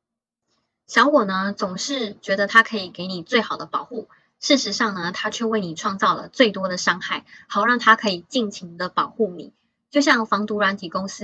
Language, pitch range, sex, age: Chinese, 190-230 Hz, female, 20-39